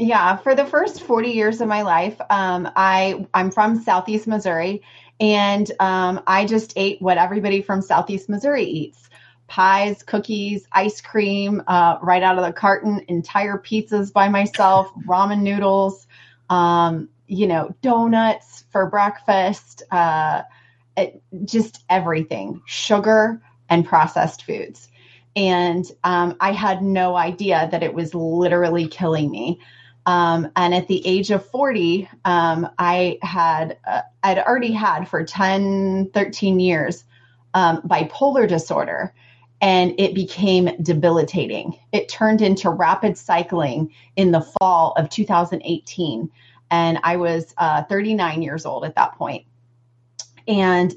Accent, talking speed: American, 135 wpm